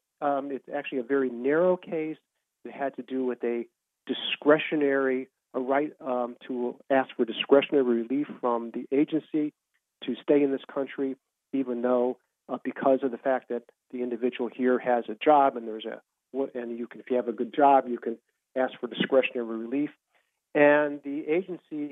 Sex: male